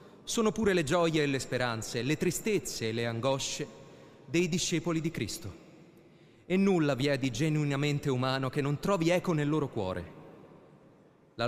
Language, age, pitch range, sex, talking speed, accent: Italian, 30-49, 145-190 Hz, male, 160 wpm, native